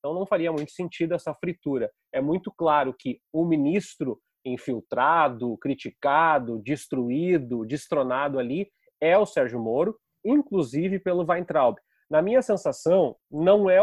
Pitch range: 155-200 Hz